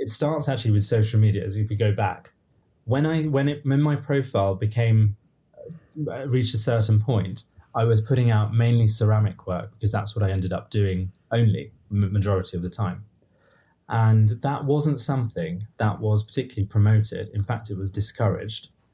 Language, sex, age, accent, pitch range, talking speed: English, male, 20-39, British, 100-120 Hz, 180 wpm